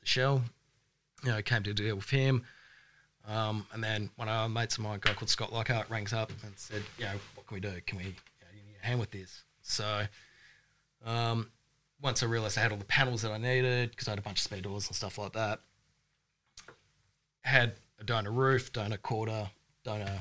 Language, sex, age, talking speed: English, male, 20-39, 210 wpm